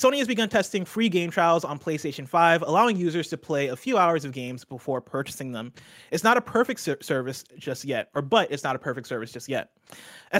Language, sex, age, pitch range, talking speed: English, male, 30-49, 140-190 Hz, 230 wpm